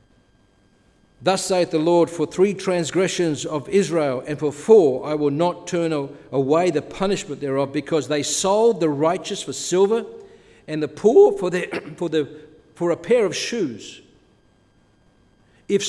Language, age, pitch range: English, 60-79, 145-190 Hz